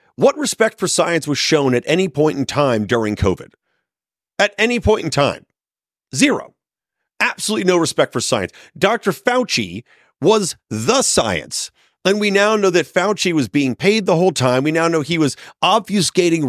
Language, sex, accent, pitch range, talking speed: English, male, American, 125-190 Hz, 170 wpm